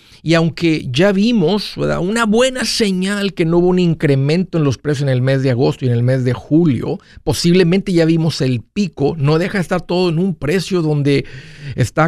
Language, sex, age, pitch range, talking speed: Spanish, male, 50-69, 130-155 Hz, 200 wpm